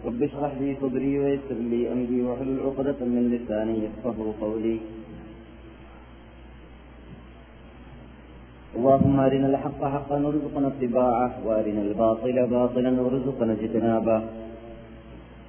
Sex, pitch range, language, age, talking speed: male, 110-135 Hz, Malayalam, 30-49, 95 wpm